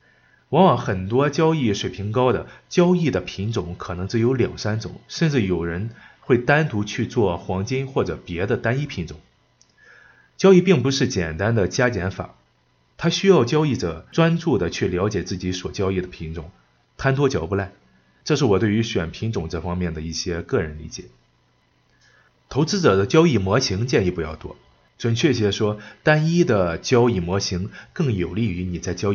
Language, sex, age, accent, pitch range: Chinese, male, 30-49, native, 90-125 Hz